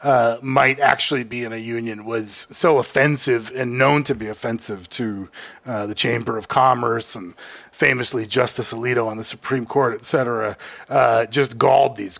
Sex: male